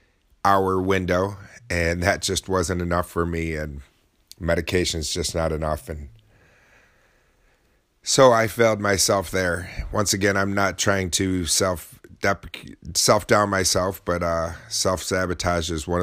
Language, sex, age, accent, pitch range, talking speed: English, male, 30-49, American, 80-95 Hz, 125 wpm